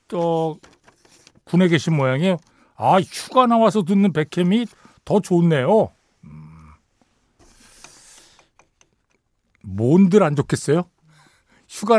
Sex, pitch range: male, 130-200 Hz